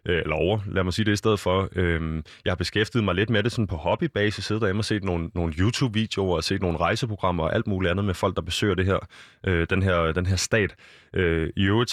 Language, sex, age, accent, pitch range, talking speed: Danish, male, 20-39, native, 90-110 Hz, 245 wpm